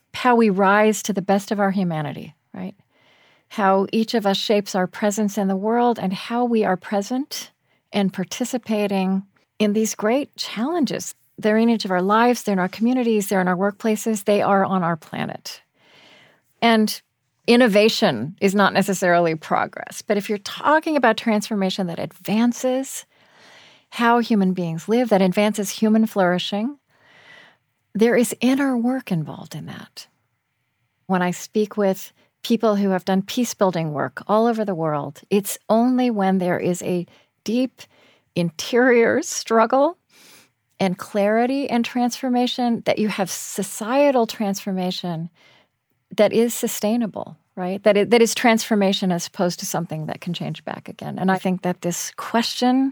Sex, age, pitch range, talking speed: female, 40-59, 185-230 Hz, 155 wpm